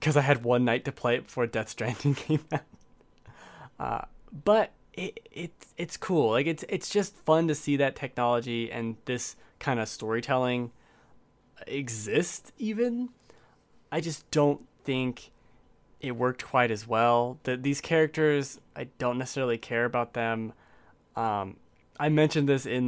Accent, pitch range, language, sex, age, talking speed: American, 120-165 Hz, English, male, 20-39, 150 wpm